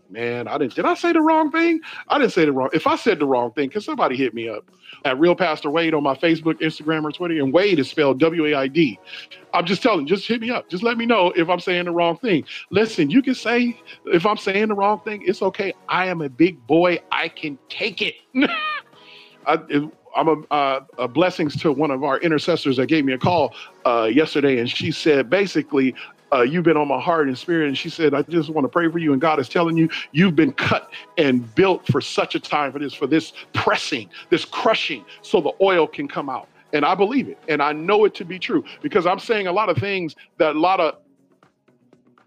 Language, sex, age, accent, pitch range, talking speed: English, male, 40-59, American, 145-210 Hz, 235 wpm